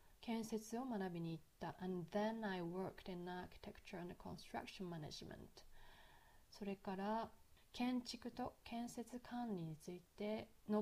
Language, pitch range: Japanese, 190-225 Hz